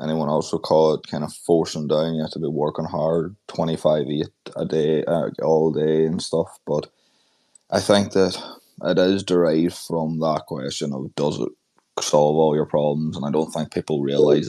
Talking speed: 200 wpm